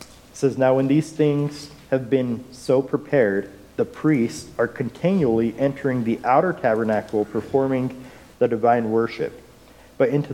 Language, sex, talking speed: English, male, 135 wpm